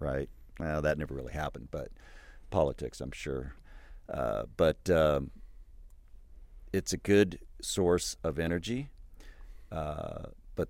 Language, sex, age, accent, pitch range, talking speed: English, male, 50-69, American, 75-95 Hz, 120 wpm